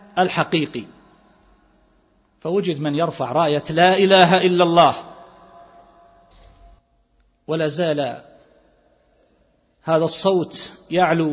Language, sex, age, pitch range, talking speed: Arabic, male, 40-59, 130-185 Hz, 75 wpm